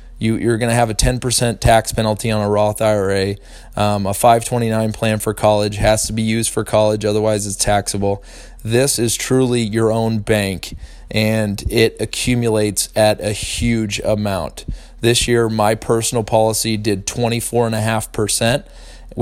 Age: 20-39